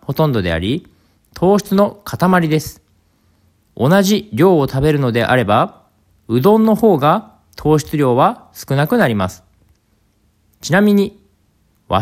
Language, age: Japanese, 40-59